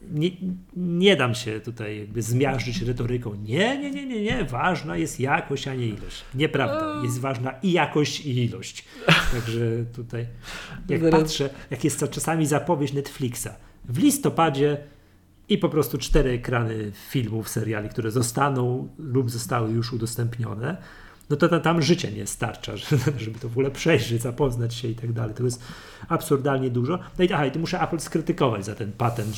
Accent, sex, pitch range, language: native, male, 110-145 Hz, Polish